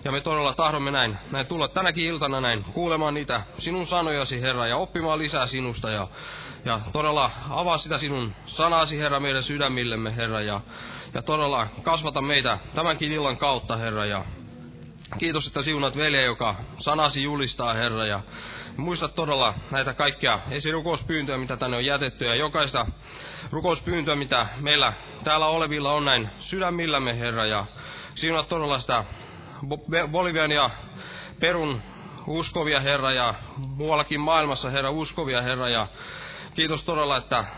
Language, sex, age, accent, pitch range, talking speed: Finnish, male, 20-39, native, 120-155 Hz, 140 wpm